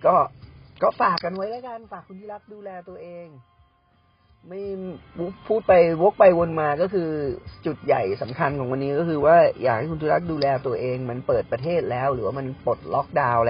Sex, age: male, 30-49